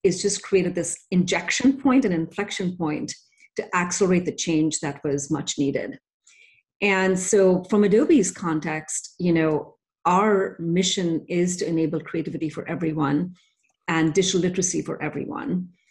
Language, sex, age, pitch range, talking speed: English, female, 40-59, 160-190 Hz, 140 wpm